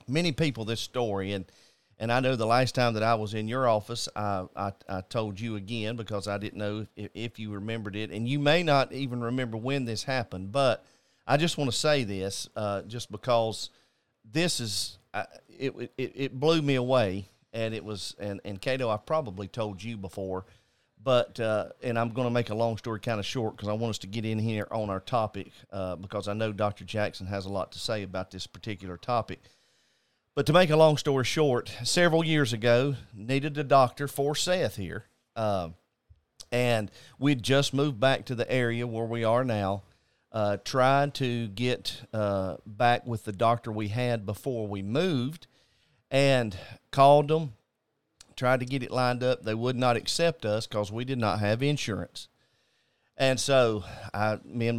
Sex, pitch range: male, 105-130 Hz